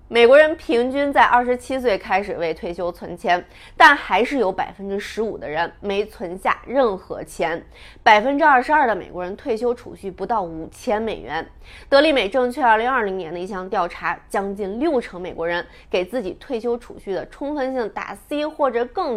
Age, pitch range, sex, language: 20-39, 195-270 Hz, female, Chinese